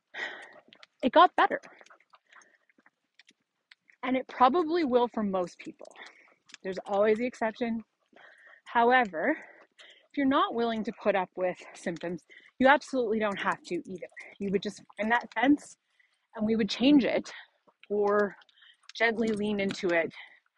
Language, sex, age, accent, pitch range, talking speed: English, female, 30-49, American, 200-275 Hz, 135 wpm